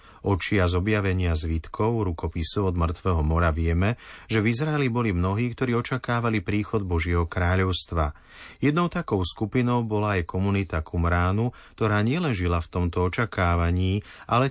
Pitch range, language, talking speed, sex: 85-120 Hz, Slovak, 135 wpm, male